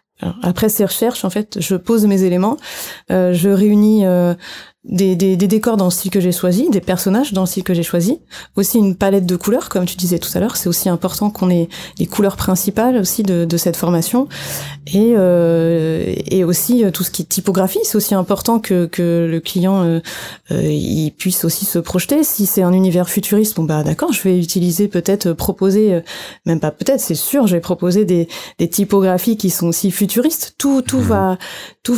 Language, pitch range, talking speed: French, 180-215 Hz, 210 wpm